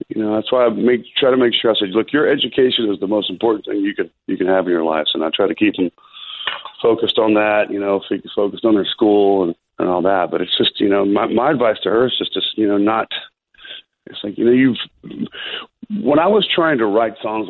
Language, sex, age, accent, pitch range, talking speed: English, male, 40-59, American, 100-130 Hz, 260 wpm